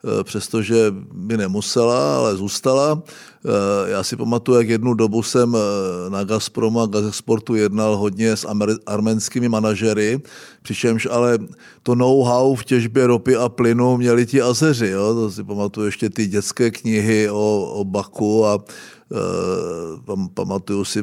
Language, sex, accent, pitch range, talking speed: Czech, male, native, 105-125 Hz, 130 wpm